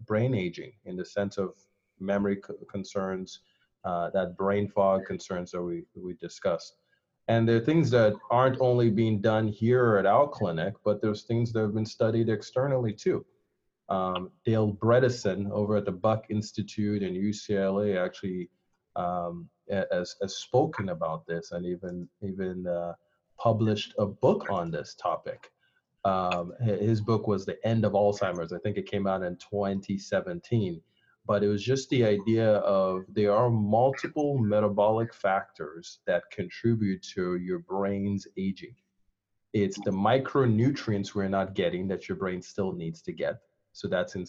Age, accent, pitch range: 30-49, American, 95-115 Hz